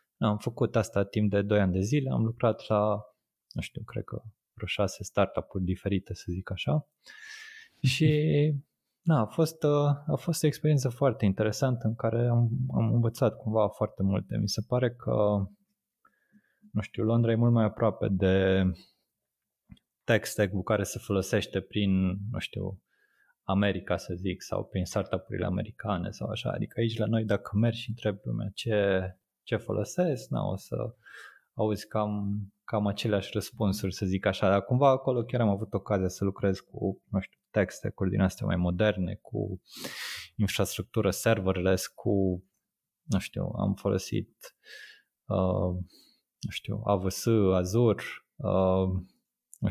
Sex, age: male, 20-39